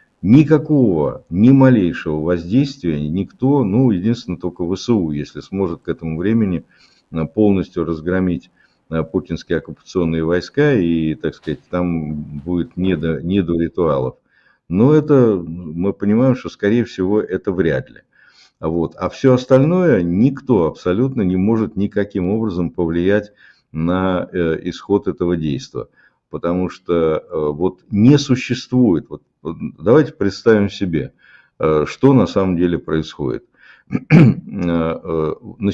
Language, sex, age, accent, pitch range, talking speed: Russian, male, 50-69, native, 85-115 Hz, 110 wpm